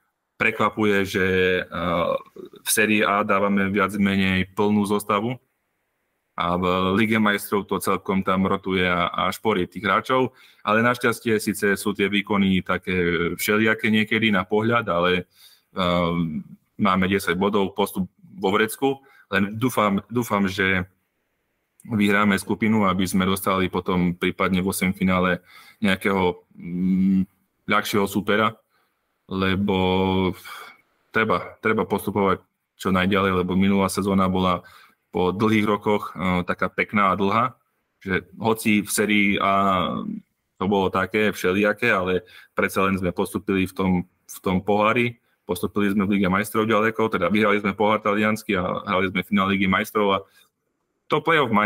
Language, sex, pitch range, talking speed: Slovak, male, 95-105 Hz, 130 wpm